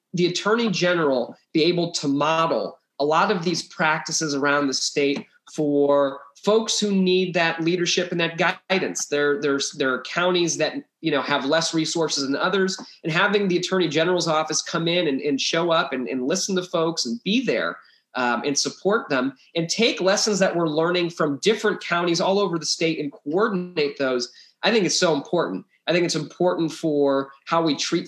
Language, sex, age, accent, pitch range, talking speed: English, male, 30-49, American, 145-180 Hz, 190 wpm